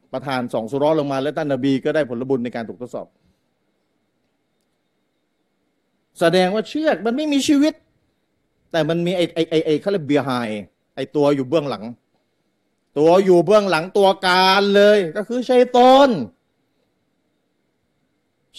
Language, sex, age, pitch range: Thai, male, 30-49, 160-240 Hz